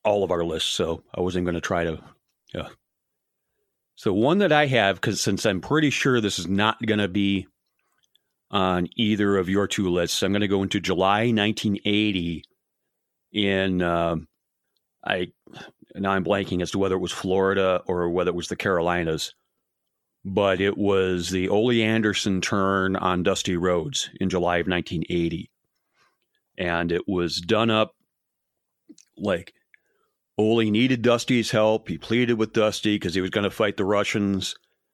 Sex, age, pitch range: male, 40-59, 90-105 Hz